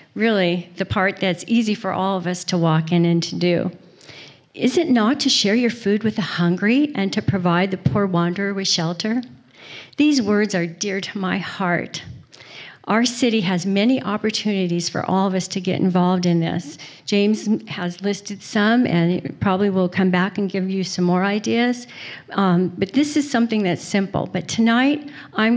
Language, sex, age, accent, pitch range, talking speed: English, female, 50-69, American, 175-210 Hz, 185 wpm